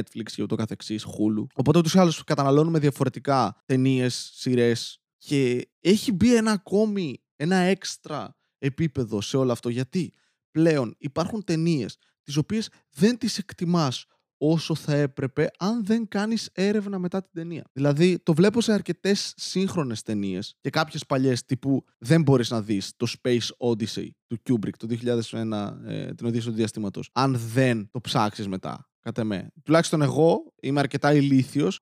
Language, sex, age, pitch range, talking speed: Greek, male, 20-39, 120-160 Hz, 155 wpm